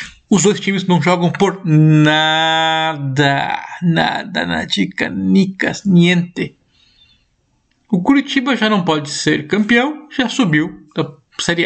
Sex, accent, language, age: male, Brazilian, Portuguese, 50-69